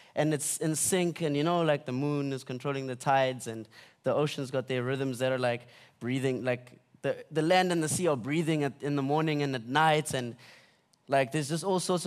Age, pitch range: 20-39, 140-175 Hz